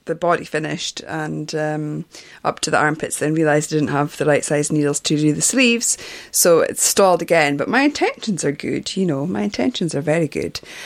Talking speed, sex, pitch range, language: 210 wpm, female, 150-170 Hz, English